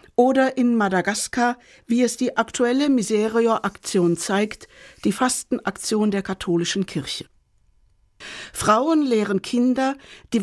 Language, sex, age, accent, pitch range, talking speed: German, female, 60-79, German, 190-250 Hz, 105 wpm